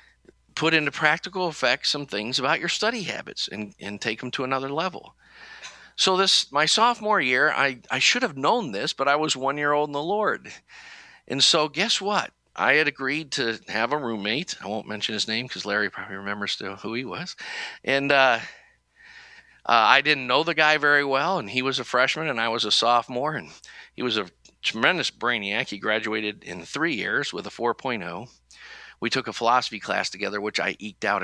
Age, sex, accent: 50-69, male, American